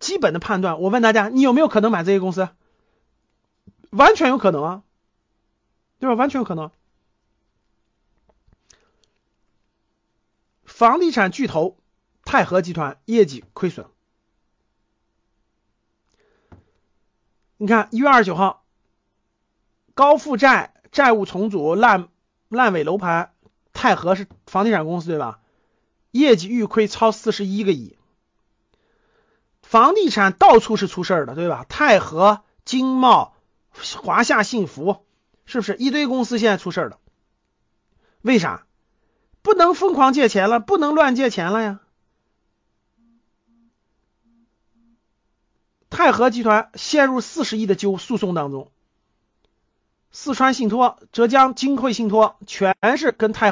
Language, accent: Chinese, native